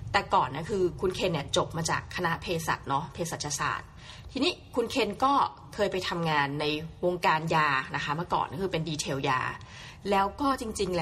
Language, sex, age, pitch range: Thai, female, 20-39, 160-220 Hz